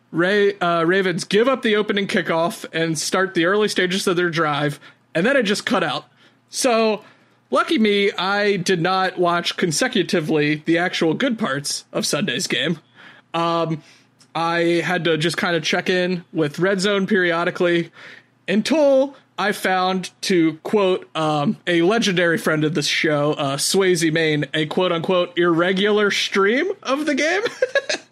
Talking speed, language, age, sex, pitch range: 155 wpm, English, 30-49, male, 170-230 Hz